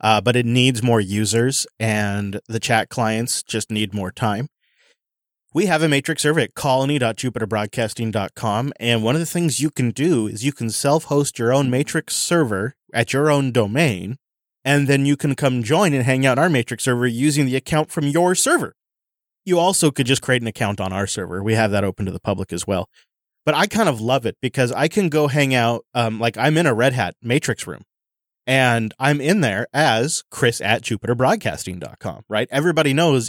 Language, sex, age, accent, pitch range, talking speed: English, male, 30-49, American, 115-145 Hz, 200 wpm